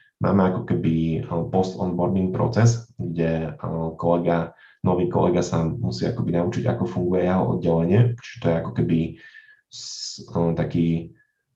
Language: Slovak